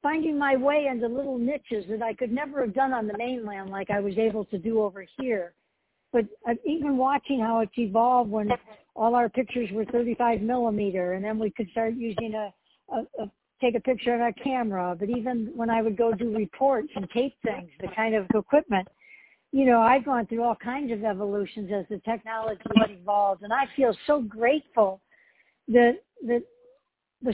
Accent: American